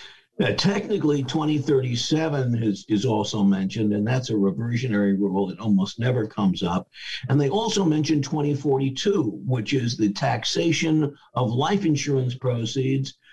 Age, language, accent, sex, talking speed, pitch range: 60-79, English, American, male, 135 wpm, 105-140 Hz